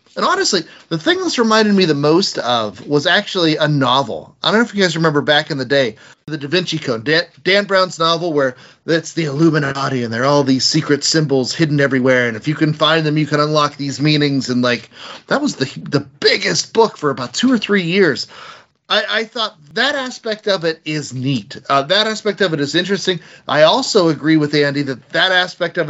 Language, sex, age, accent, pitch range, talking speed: English, male, 30-49, American, 145-205 Hz, 220 wpm